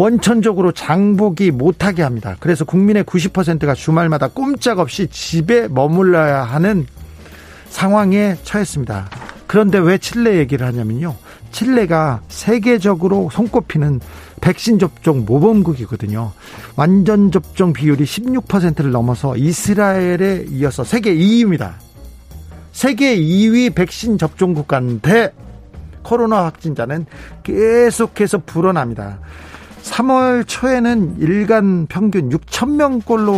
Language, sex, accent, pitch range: Korean, male, native, 140-205 Hz